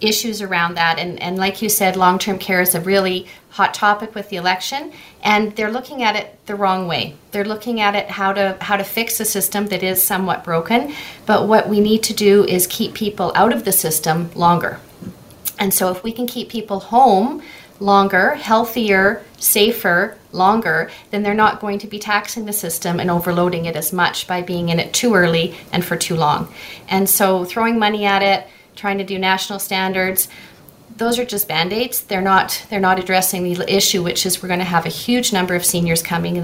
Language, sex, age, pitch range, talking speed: English, female, 40-59, 180-210 Hz, 205 wpm